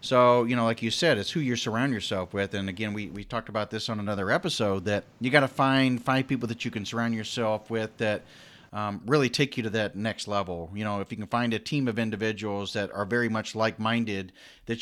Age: 40-59